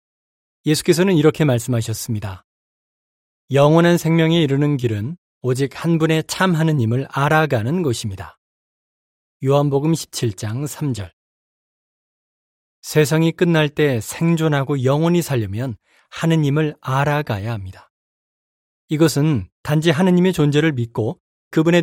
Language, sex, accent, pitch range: Korean, male, native, 120-160 Hz